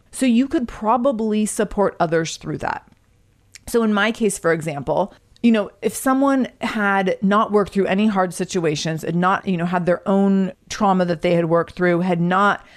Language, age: English, 40-59